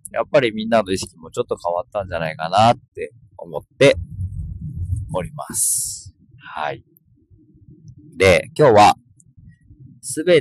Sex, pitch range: male, 90-135 Hz